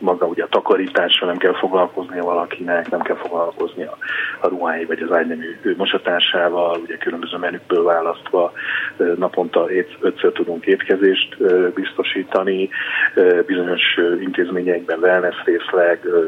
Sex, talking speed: male, 110 wpm